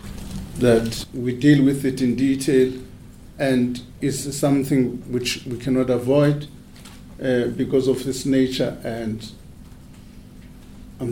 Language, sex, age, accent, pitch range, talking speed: English, male, 50-69, South African, 120-145 Hz, 115 wpm